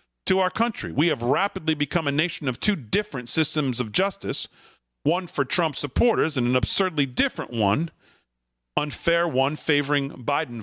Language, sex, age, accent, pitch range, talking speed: English, male, 40-59, American, 125-165 Hz, 160 wpm